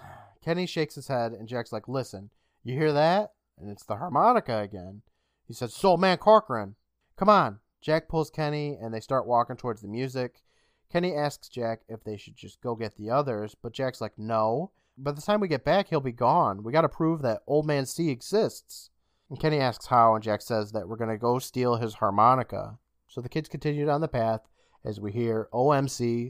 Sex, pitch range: male, 110-150 Hz